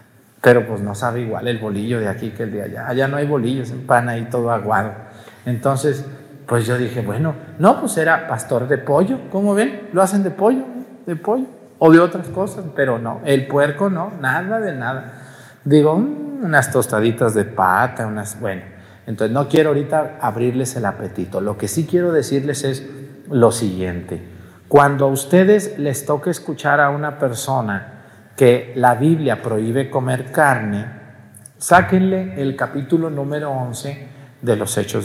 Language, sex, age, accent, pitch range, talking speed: Spanish, male, 50-69, Mexican, 115-155 Hz, 170 wpm